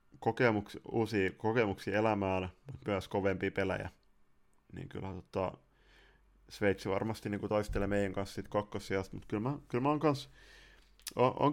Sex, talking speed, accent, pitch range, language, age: male, 130 wpm, native, 95-105 Hz, Finnish, 20-39